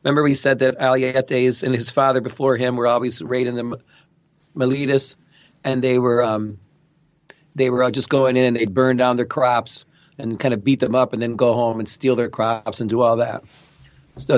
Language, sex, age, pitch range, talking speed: English, male, 40-59, 115-150 Hz, 205 wpm